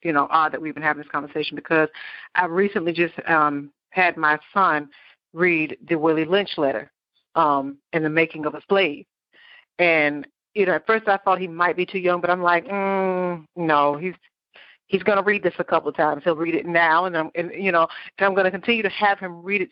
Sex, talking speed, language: female, 230 wpm, English